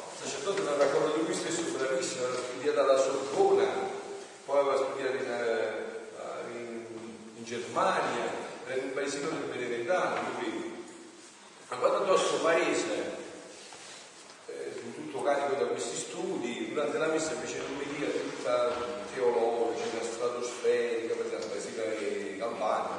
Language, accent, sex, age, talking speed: Italian, native, male, 40-59, 120 wpm